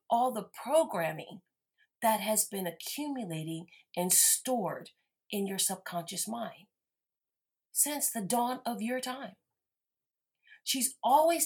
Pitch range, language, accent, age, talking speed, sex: 190-245 Hz, English, American, 40-59, 110 wpm, female